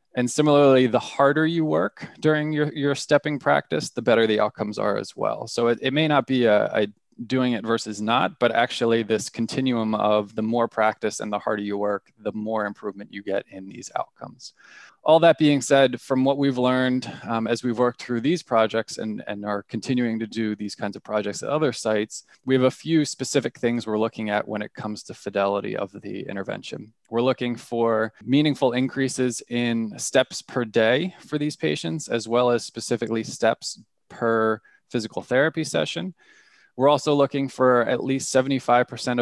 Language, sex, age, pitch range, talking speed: English, male, 20-39, 110-130 Hz, 190 wpm